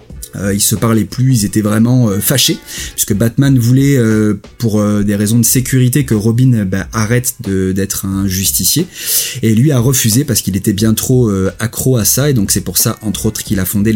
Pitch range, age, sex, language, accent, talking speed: 100-130 Hz, 30-49, male, French, French, 215 wpm